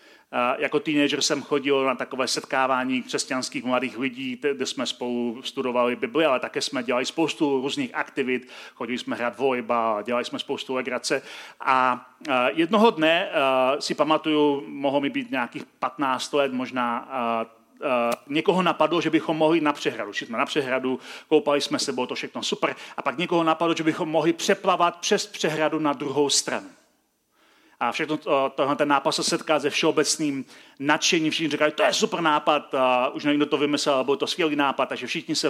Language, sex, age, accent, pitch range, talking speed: Czech, male, 40-59, native, 135-190 Hz, 180 wpm